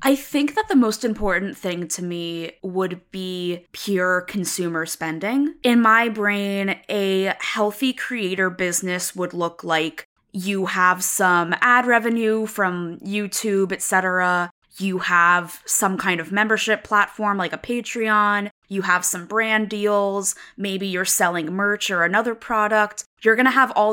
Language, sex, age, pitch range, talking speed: English, female, 20-39, 175-210 Hz, 150 wpm